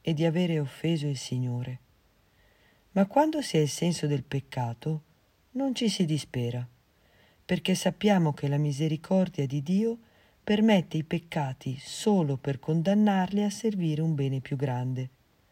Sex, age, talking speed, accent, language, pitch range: female, 40-59, 145 wpm, native, Italian, 135-200 Hz